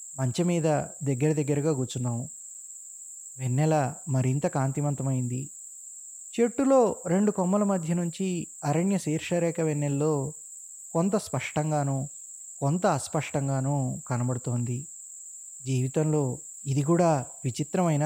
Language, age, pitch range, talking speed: Telugu, 20-39, 135-185 Hz, 80 wpm